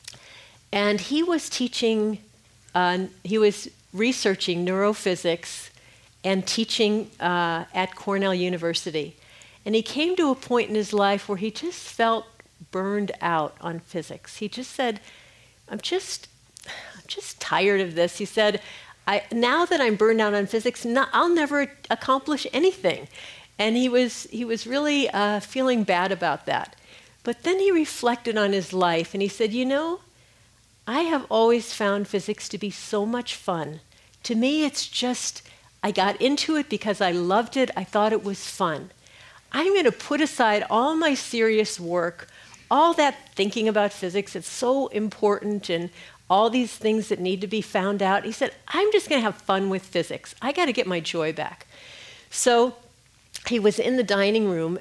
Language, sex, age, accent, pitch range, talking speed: English, female, 50-69, American, 185-245 Hz, 175 wpm